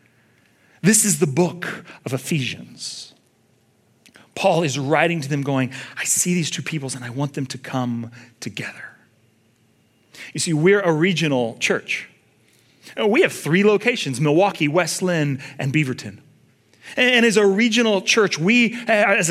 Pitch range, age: 135-200 Hz, 30-49